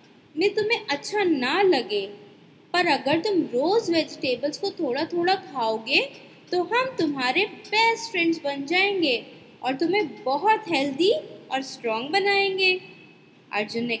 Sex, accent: female, native